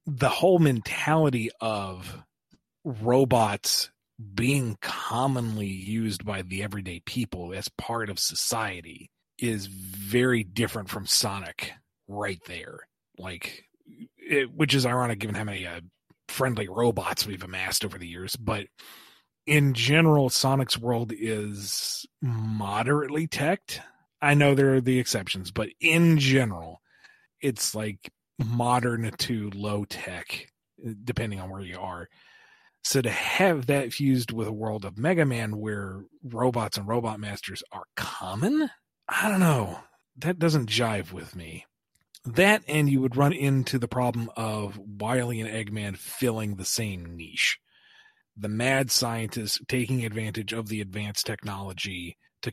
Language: English